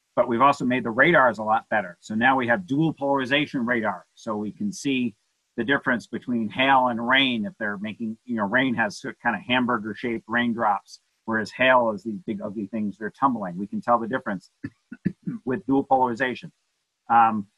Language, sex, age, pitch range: English, male, 50-69, 120-170 Hz